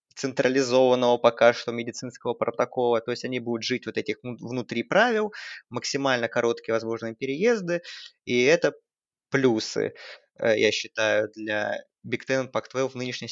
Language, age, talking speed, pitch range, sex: Russian, 20-39, 125 wpm, 115-135 Hz, male